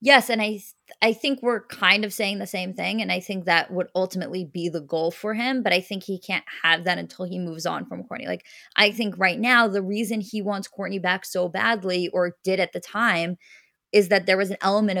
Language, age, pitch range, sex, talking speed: English, 20-39, 175-210 Hz, female, 245 wpm